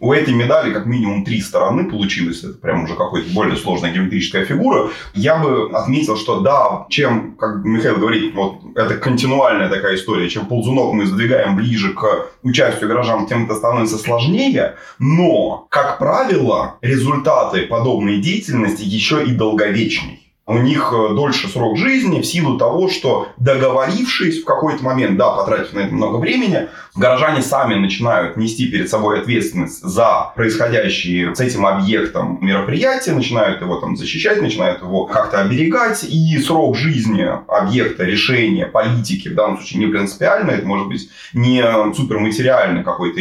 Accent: native